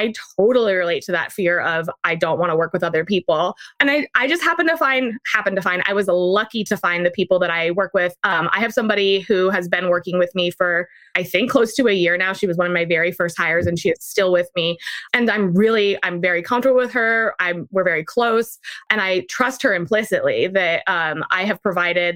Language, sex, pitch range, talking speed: English, female, 175-225 Hz, 245 wpm